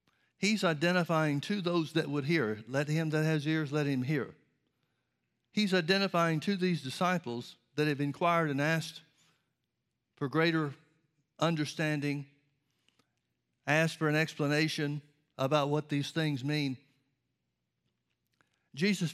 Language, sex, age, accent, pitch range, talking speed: English, male, 60-79, American, 130-160 Hz, 120 wpm